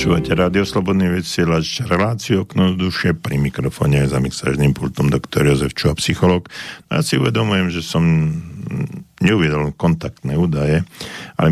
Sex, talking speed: male, 125 wpm